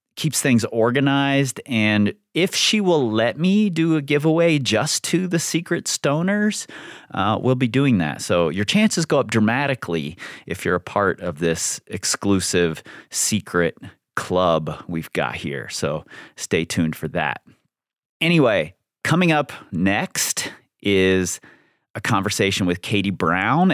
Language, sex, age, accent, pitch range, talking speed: English, male, 30-49, American, 85-125 Hz, 140 wpm